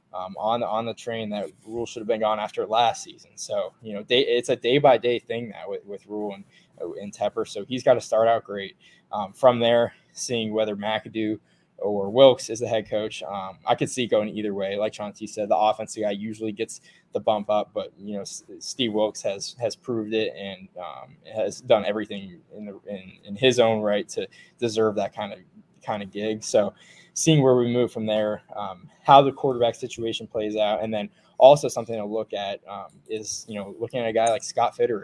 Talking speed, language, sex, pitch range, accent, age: 225 wpm, English, male, 105-120 Hz, American, 10-29